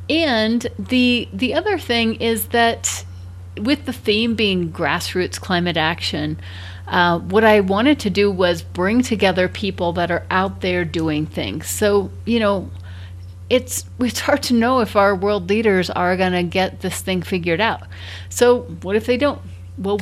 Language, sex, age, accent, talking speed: English, female, 30-49, American, 170 wpm